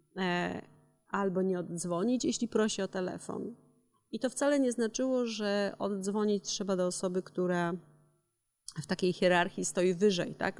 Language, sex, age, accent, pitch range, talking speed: Polish, female, 30-49, native, 180-225 Hz, 135 wpm